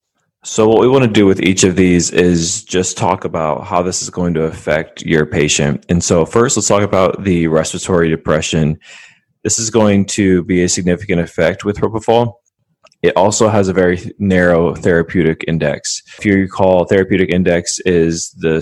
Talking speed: 180 wpm